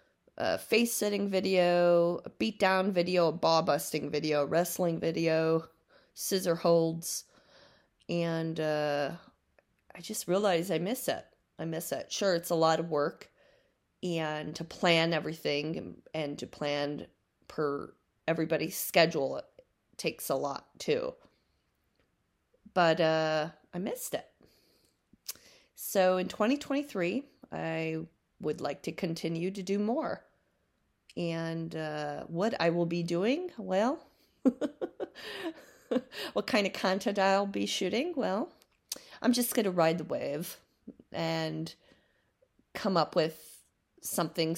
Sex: female